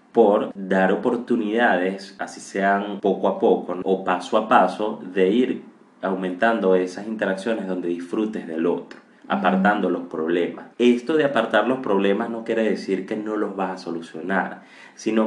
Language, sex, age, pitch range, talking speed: Spanish, male, 30-49, 90-110 Hz, 155 wpm